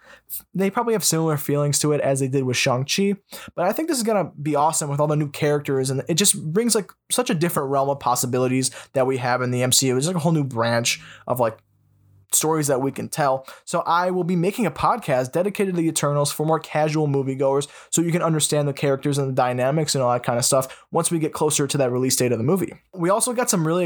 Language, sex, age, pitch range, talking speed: English, male, 20-39, 135-180 Hz, 255 wpm